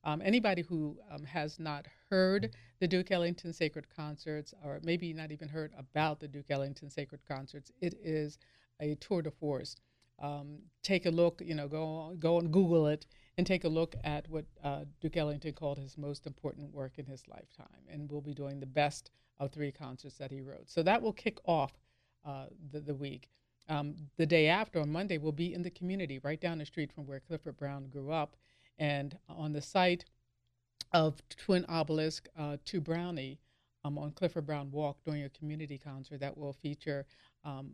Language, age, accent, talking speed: English, 50-69, American, 195 wpm